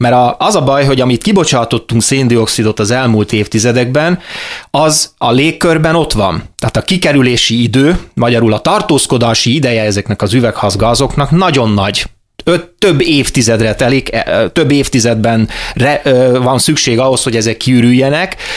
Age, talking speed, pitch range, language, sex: 30-49, 135 wpm, 115-145 Hz, Hungarian, male